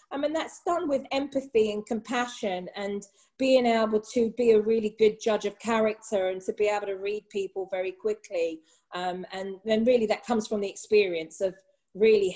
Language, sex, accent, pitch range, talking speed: English, female, British, 185-220 Hz, 190 wpm